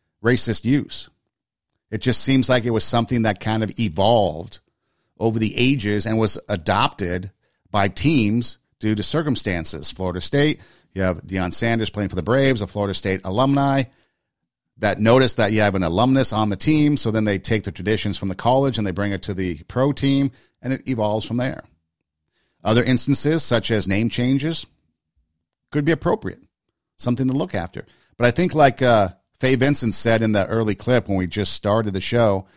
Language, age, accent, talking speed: English, 50-69, American, 185 wpm